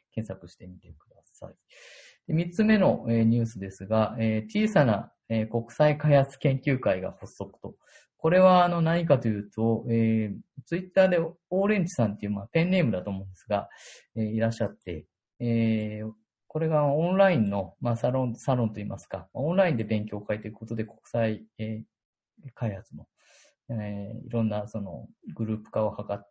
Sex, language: male, Japanese